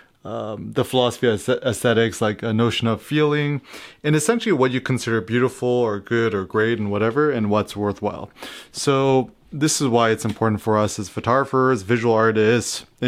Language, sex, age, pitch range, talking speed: English, male, 30-49, 110-125 Hz, 170 wpm